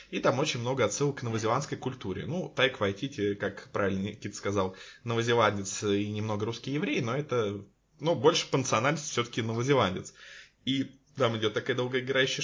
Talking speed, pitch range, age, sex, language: 155 wpm, 110-155 Hz, 20-39, male, Russian